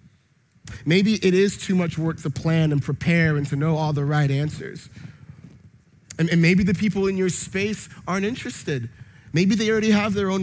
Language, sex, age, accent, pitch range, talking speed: English, male, 30-49, American, 135-165 Hz, 190 wpm